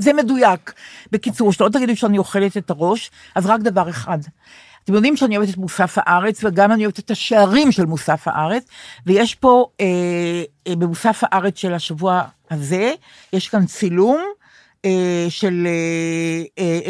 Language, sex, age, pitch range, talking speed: Hebrew, female, 50-69, 180-235 Hz, 150 wpm